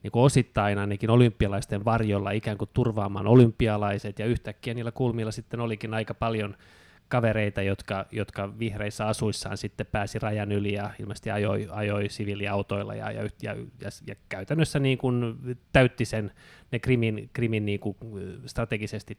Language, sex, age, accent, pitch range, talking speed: Finnish, male, 20-39, native, 105-120 Hz, 145 wpm